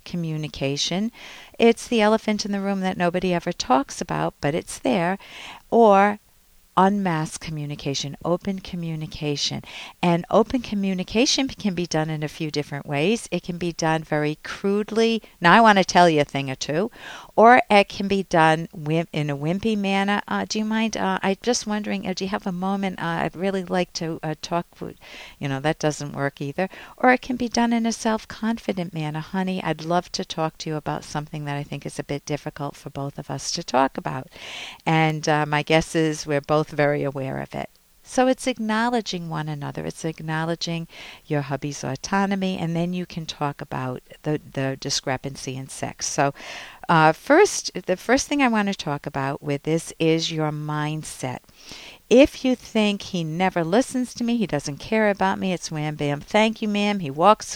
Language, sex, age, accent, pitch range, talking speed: English, female, 60-79, American, 150-200 Hz, 195 wpm